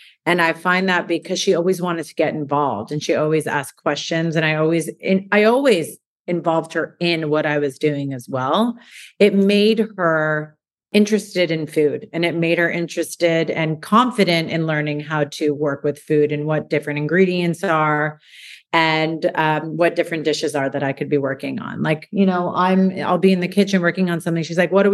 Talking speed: 200 wpm